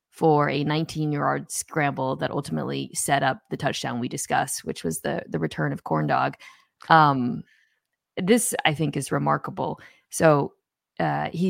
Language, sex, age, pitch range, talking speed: English, female, 20-39, 145-180 Hz, 150 wpm